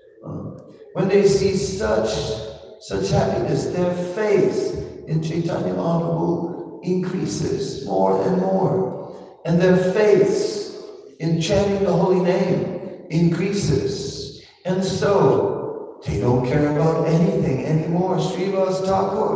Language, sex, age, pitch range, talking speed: English, male, 60-79, 110-185 Hz, 100 wpm